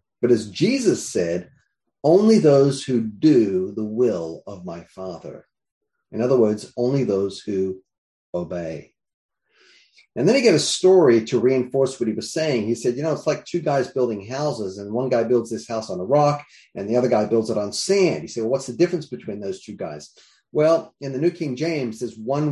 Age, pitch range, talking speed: 40-59, 110-150 Hz, 205 wpm